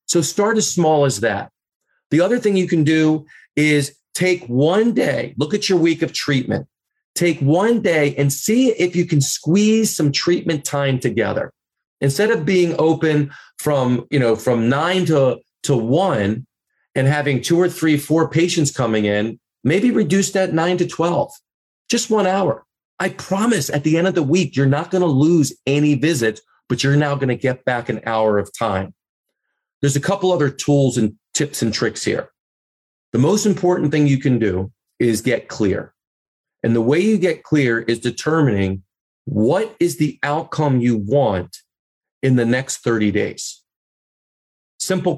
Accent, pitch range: American, 120-175 Hz